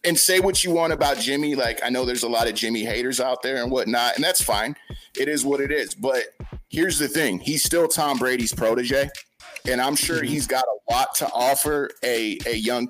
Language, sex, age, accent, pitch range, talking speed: English, male, 30-49, American, 125-160 Hz, 230 wpm